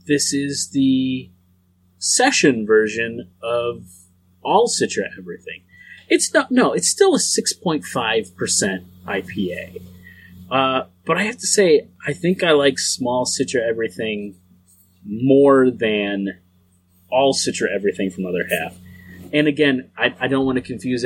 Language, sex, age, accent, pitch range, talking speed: English, male, 30-49, American, 90-130 Hz, 130 wpm